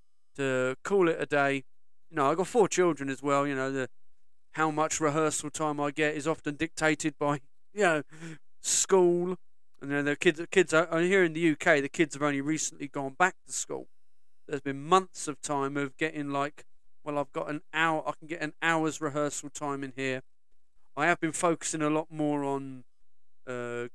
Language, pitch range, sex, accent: English, 135-165 Hz, male, British